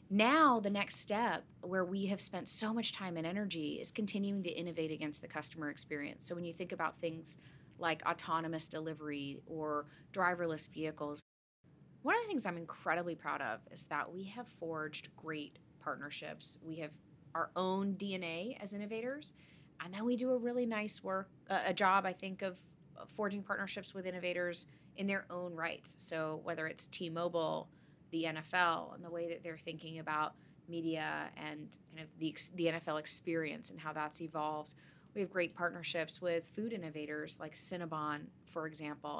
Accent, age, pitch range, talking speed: American, 30-49, 155-195 Hz, 170 wpm